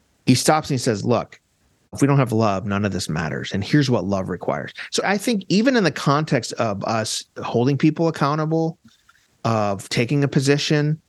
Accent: American